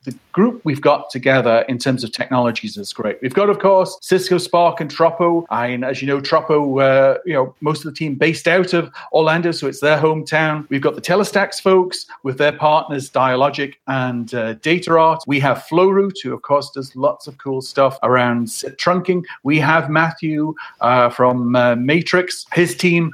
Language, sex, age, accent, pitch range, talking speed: English, male, 40-59, British, 130-165 Hz, 190 wpm